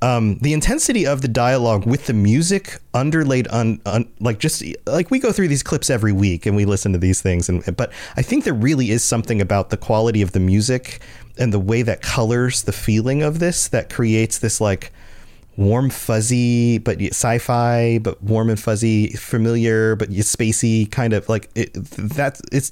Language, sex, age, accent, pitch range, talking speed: English, male, 30-49, American, 105-135 Hz, 195 wpm